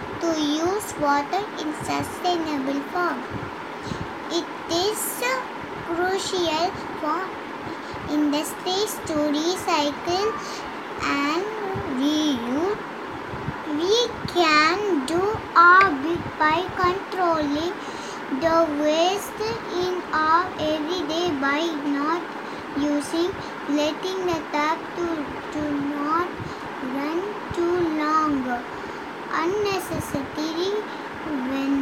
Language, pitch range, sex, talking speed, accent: Tamil, 300-370 Hz, male, 80 wpm, native